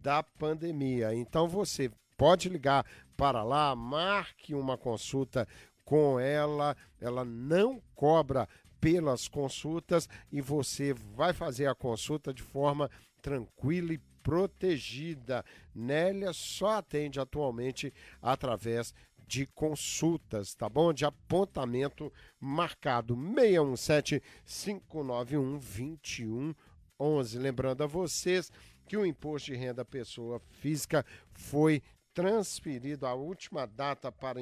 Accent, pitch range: Brazilian, 125-155 Hz